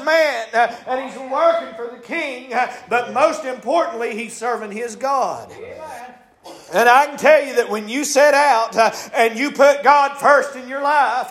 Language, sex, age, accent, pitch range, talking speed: English, male, 50-69, American, 245-290 Hz, 175 wpm